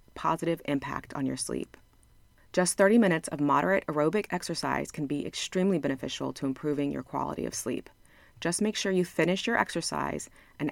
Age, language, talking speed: 30-49, English, 170 wpm